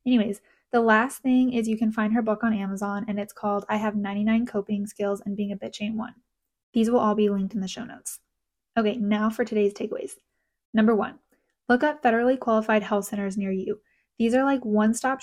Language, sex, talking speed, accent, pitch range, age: English, female, 215 wpm, American, 210-240 Hz, 10-29